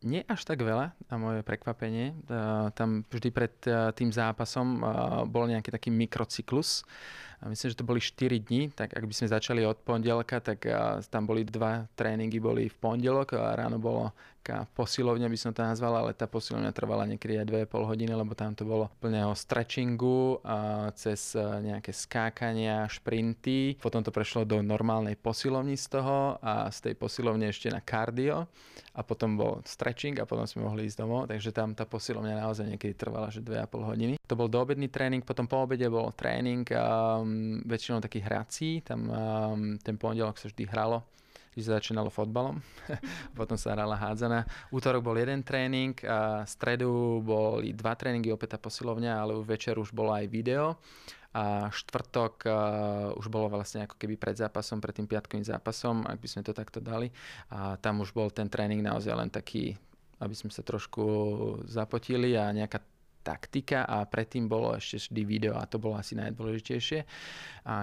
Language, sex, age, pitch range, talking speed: Slovak, male, 20-39, 110-120 Hz, 175 wpm